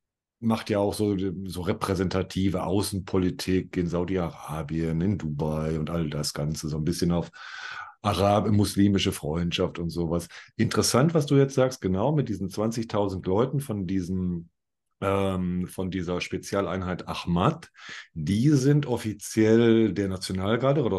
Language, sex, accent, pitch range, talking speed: German, male, German, 90-115 Hz, 130 wpm